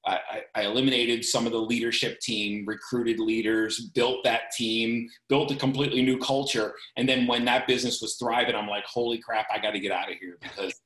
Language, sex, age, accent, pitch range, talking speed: English, male, 30-49, American, 110-135 Hz, 200 wpm